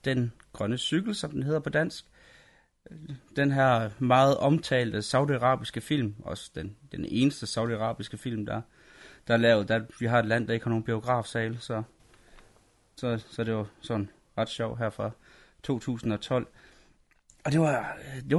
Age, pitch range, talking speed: 30-49, 115-150 Hz, 160 wpm